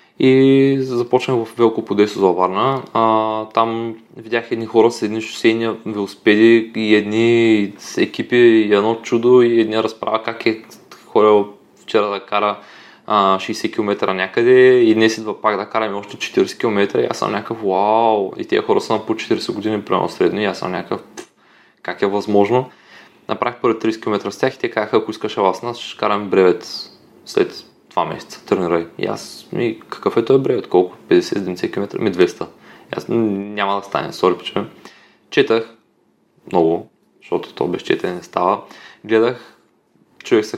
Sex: male